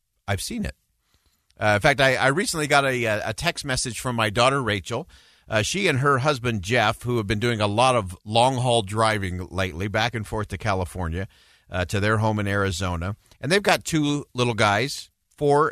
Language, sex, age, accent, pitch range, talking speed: English, male, 50-69, American, 100-130 Hz, 200 wpm